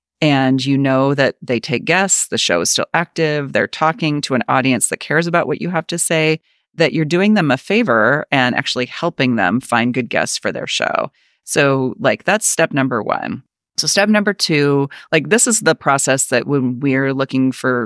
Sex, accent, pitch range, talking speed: female, American, 130-160 Hz, 205 wpm